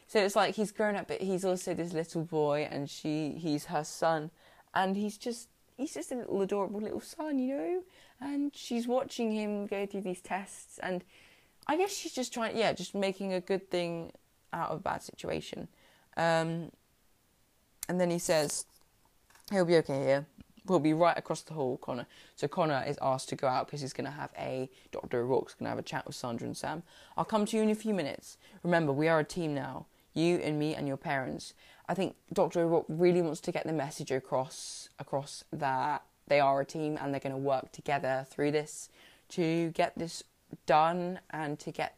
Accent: British